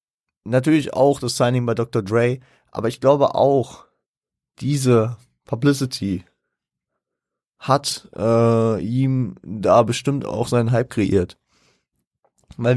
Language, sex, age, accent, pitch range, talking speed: German, male, 30-49, German, 105-130 Hz, 110 wpm